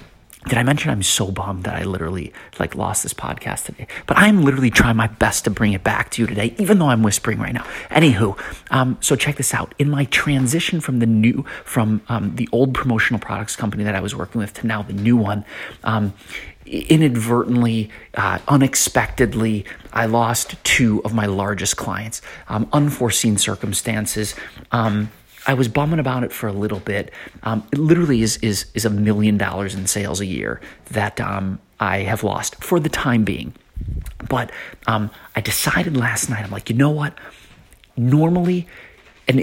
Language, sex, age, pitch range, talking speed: English, male, 30-49, 105-130 Hz, 185 wpm